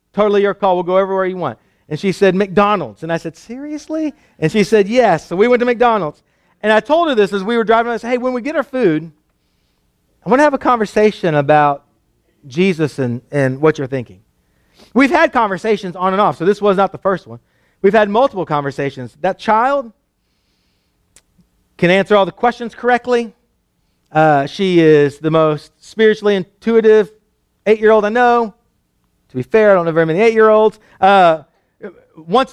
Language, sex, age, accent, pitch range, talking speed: English, male, 40-59, American, 165-230 Hz, 185 wpm